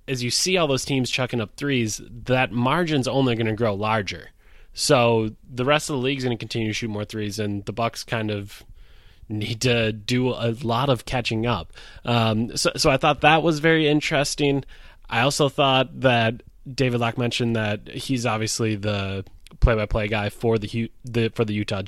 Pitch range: 105-130 Hz